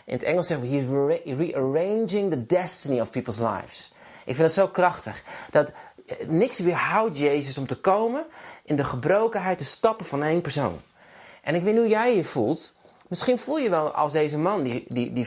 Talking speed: 205 wpm